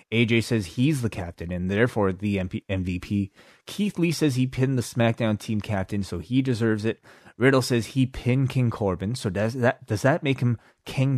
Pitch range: 95-120 Hz